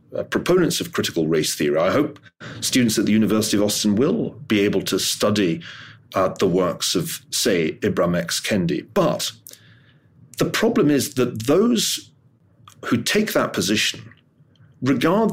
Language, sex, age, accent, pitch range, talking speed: English, male, 40-59, British, 115-170 Hz, 150 wpm